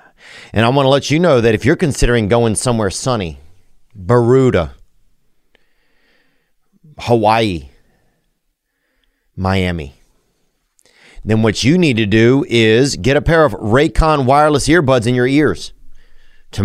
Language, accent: English, American